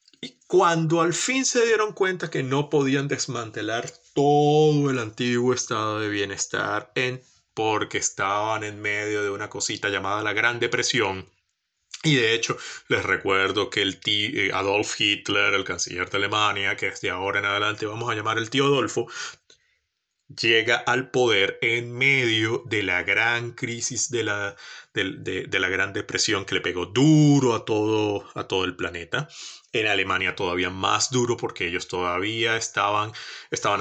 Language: Spanish